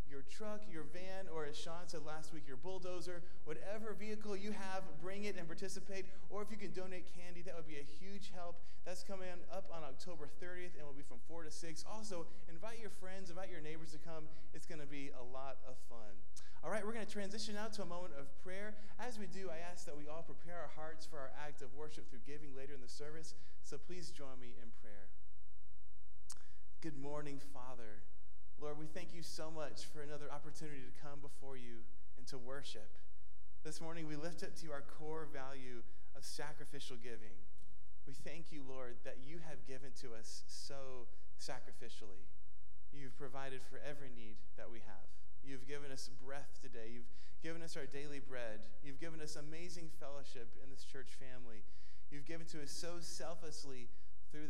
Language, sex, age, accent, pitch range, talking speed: English, male, 20-39, American, 125-170 Hz, 195 wpm